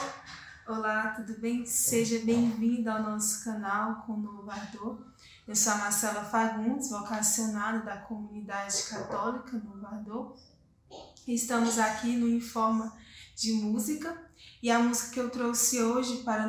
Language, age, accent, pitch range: Portuguese, 10-29, Brazilian, 215-240 Hz